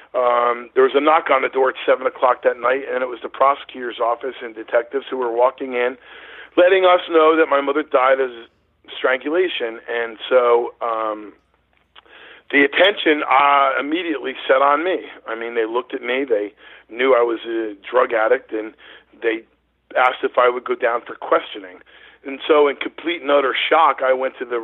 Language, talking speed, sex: English, 190 wpm, male